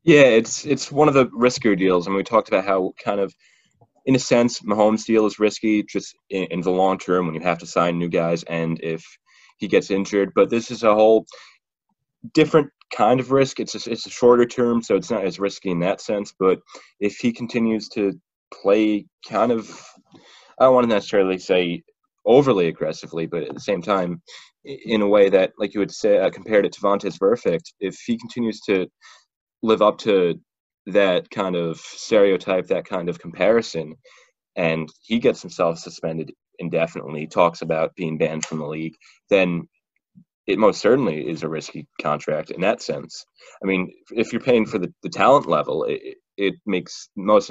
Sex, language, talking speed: male, English, 195 wpm